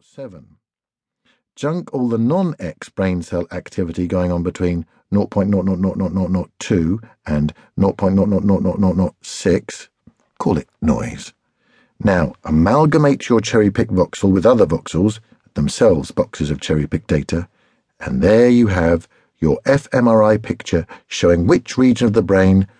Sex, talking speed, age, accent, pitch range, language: male, 120 wpm, 50-69, British, 90-115 Hz, English